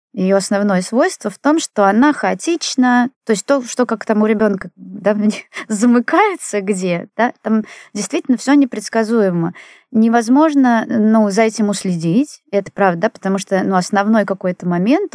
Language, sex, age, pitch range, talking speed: Russian, female, 20-39, 185-240 Hz, 145 wpm